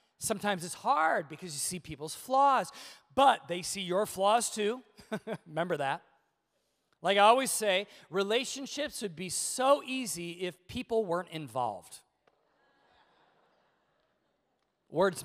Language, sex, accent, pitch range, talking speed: English, male, American, 180-245 Hz, 120 wpm